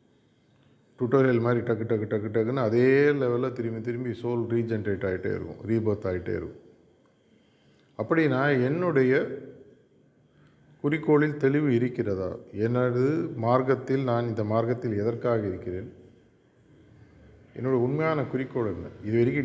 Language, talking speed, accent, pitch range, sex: Tamil, 110 wpm, native, 110-135 Hz, male